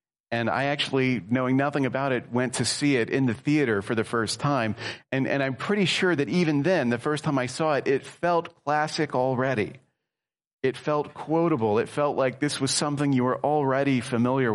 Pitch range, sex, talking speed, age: 130-165 Hz, male, 200 wpm, 40-59